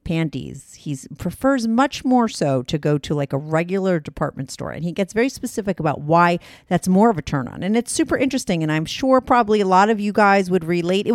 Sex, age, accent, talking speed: female, 40-59, American, 230 wpm